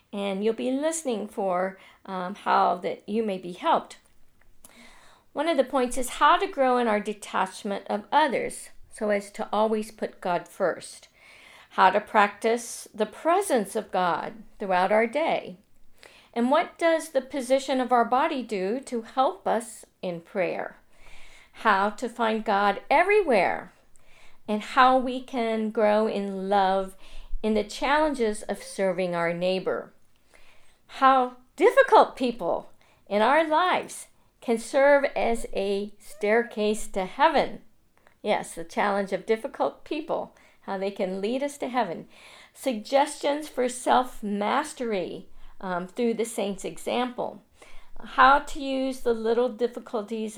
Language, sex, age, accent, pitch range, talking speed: English, female, 50-69, American, 200-265 Hz, 135 wpm